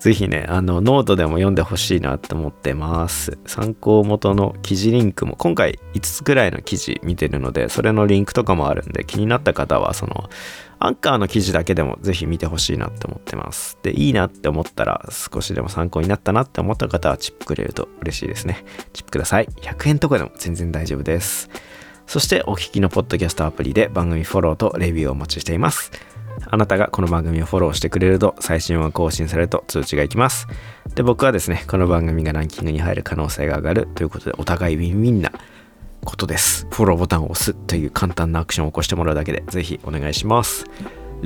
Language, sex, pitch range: Japanese, male, 80-100 Hz